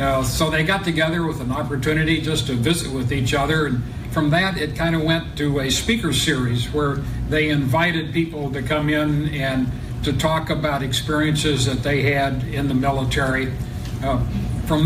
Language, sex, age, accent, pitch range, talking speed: English, male, 60-79, American, 135-160 Hz, 180 wpm